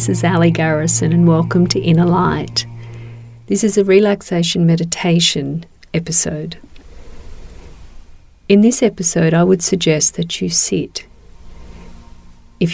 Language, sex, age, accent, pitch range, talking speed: English, female, 40-59, Australian, 115-185 Hz, 120 wpm